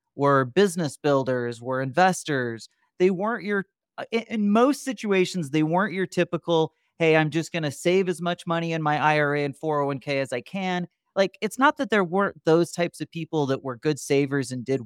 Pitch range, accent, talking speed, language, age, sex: 140-180 Hz, American, 195 wpm, English, 30-49, male